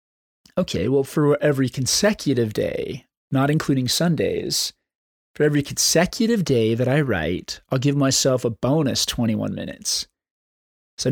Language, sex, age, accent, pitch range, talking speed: English, male, 20-39, American, 115-150 Hz, 130 wpm